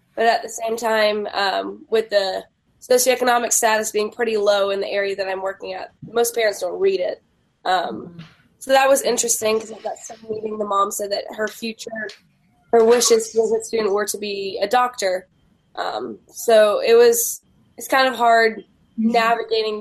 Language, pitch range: English, 200-230 Hz